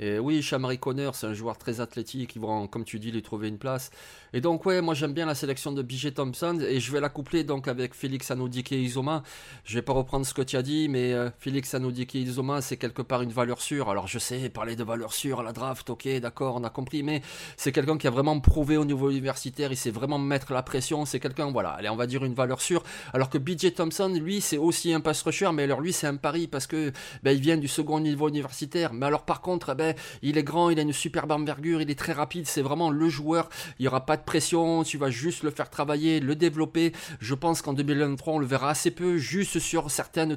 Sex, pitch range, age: male, 130-160 Hz, 30-49